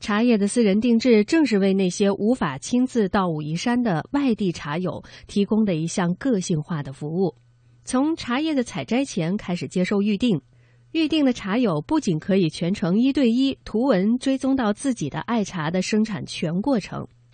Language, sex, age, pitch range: Chinese, female, 20-39, 170-245 Hz